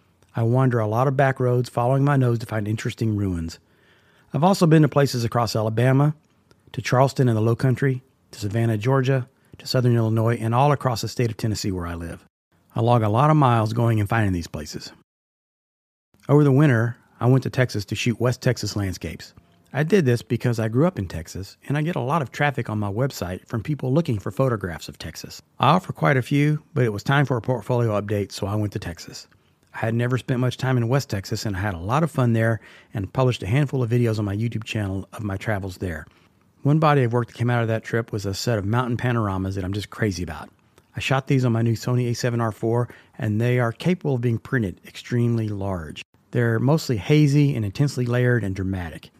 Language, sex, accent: English, male, American